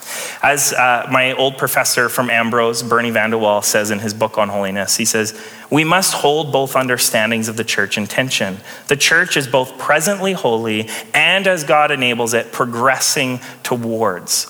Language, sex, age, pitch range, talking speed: English, male, 30-49, 115-150 Hz, 160 wpm